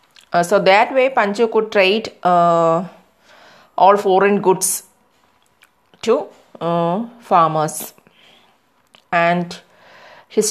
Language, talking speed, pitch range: English, 90 wpm, 170-205 Hz